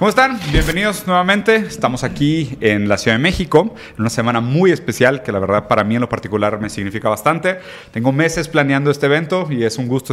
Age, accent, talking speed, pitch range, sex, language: 30-49, Mexican, 215 wpm, 120-160 Hz, male, Spanish